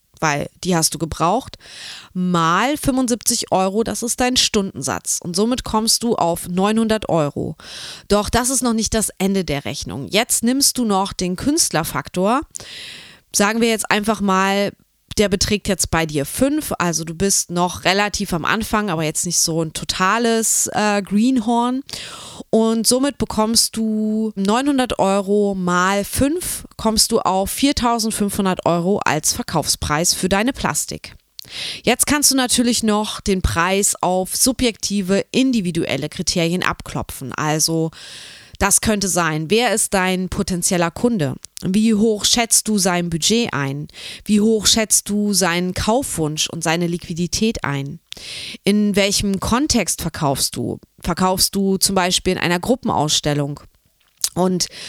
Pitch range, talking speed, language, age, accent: 175-225 Hz, 140 wpm, German, 20-39, German